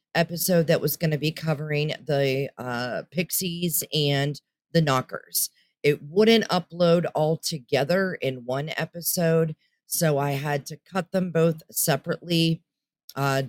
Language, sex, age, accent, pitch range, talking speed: English, female, 40-59, American, 140-165 Hz, 135 wpm